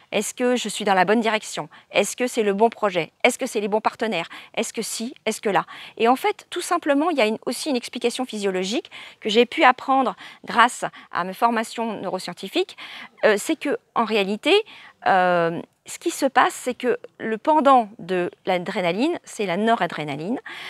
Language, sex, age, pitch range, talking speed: English, female, 40-59, 185-250 Hz, 190 wpm